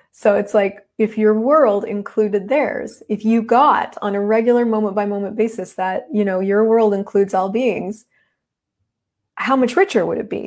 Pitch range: 195-245 Hz